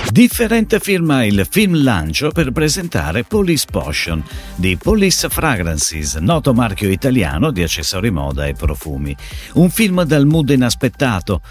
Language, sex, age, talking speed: Italian, male, 50-69, 130 wpm